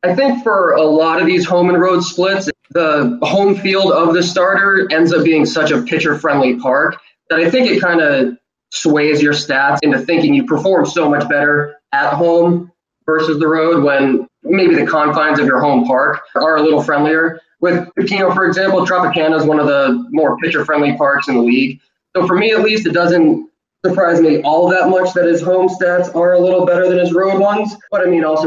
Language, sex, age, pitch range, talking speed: English, male, 20-39, 140-185 Hz, 215 wpm